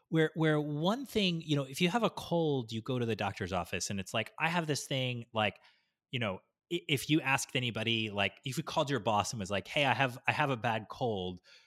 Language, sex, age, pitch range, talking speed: English, male, 30-49, 110-155 Hz, 245 wpm